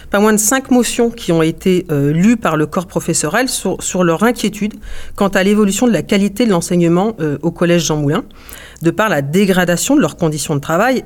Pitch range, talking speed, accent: 155-205 Hz, 215 wpm, French